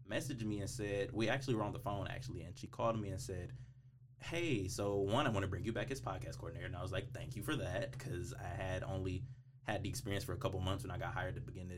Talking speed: 285 wpm